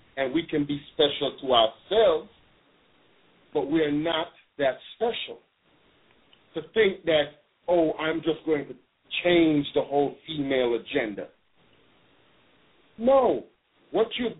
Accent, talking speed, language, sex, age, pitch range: American, 120 wpm, English, male, 40-59, 145-190 Hz